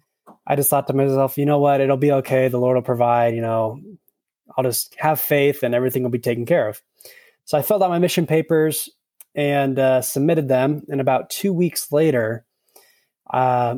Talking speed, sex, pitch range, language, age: 195 wpm, male, 125-145 Hz, English, 20-39